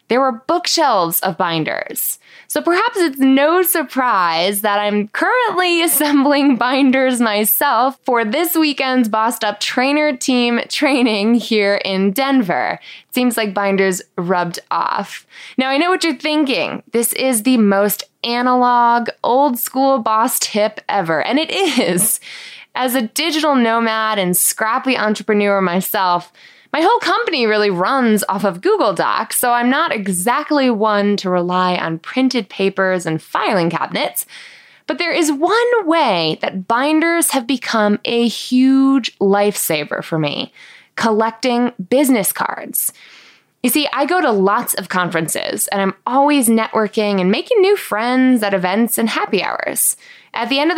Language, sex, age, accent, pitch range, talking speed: English, female, 20-39, American, 200-280 Hz, 145 wpm